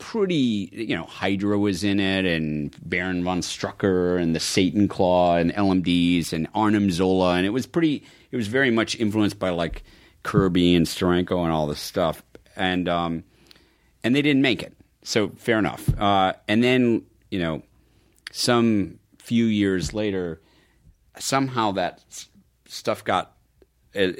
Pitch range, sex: 95-120 Hz, male